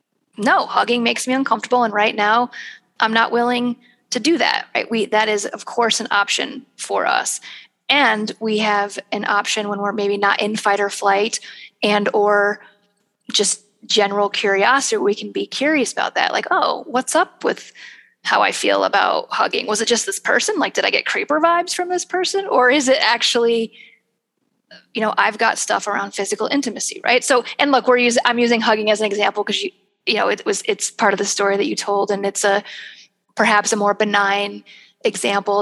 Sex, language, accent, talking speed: female, English, American, 200 wpm